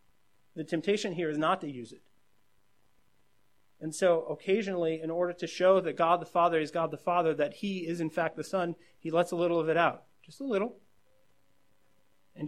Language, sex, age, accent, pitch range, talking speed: English, male, 30-49, American, 150-185 Hz, 195 wpm